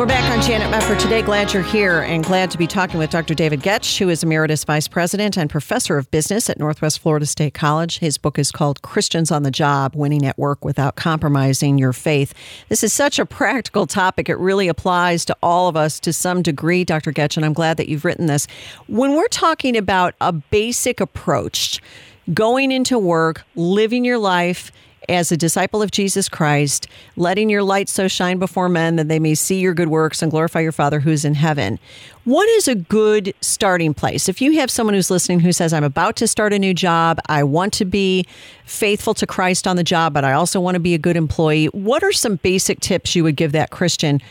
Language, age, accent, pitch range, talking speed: English, 50-69, American, 155-200 Hz, 220 wpm